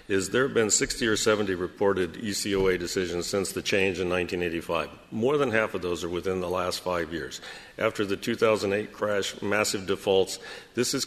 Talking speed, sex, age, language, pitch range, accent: 185 wpm, male, 50-69, English, 100-120 Hz, American